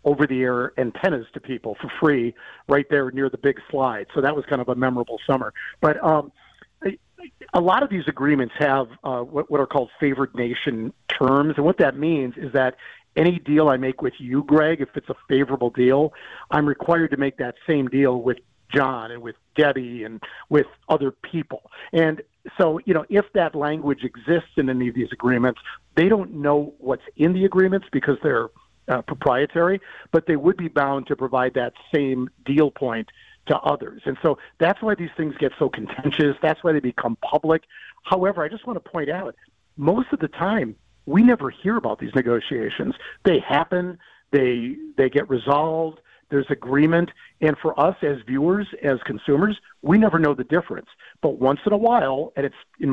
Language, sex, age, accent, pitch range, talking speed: English, male, 50-69, American, 130-160 Hz, 185 wpm